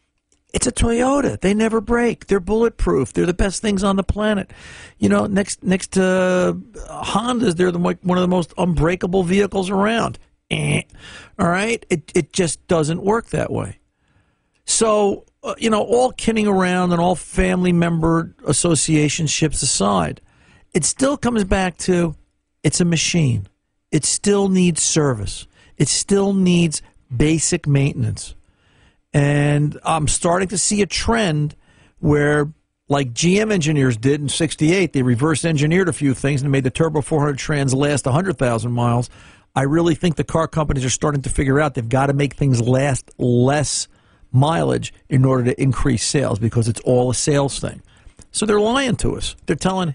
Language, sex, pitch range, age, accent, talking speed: English, male, 135-190 Hz, 50-69, American, 165 wpm